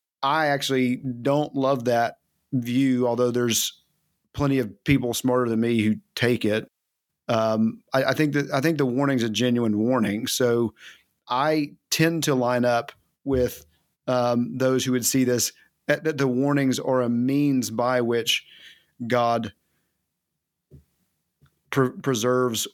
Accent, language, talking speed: American, English, 140 wpm